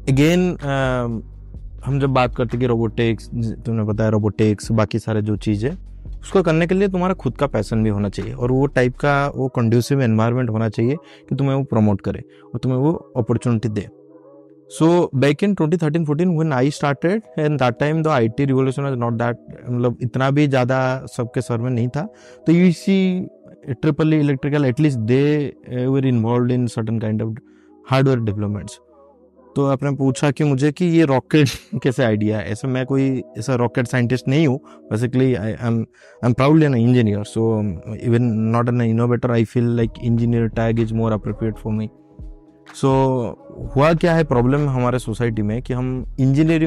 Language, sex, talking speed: English, male, 125 wpm